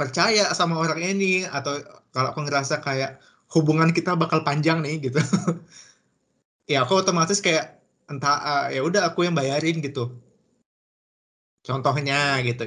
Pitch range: 130-170 Hz